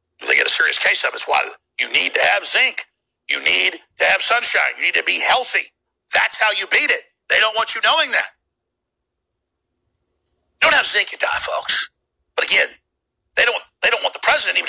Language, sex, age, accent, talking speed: English, male, 50-69, American, 215 wpm